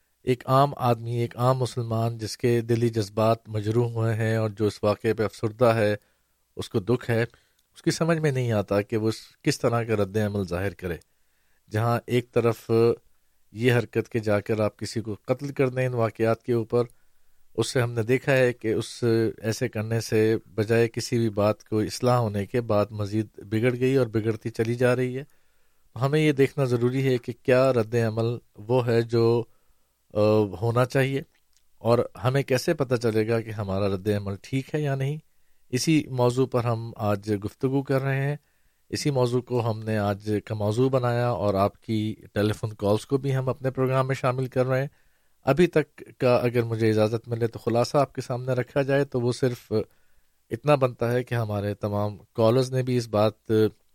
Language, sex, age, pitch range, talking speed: Urdu, male, 50-69, 110-125 Hz, 195 wpm